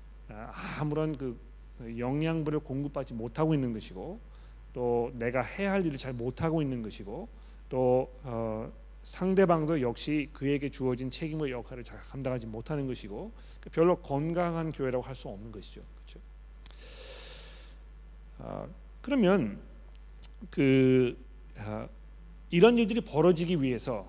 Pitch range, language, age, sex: 115-155 Hz, Korean, 40-59, male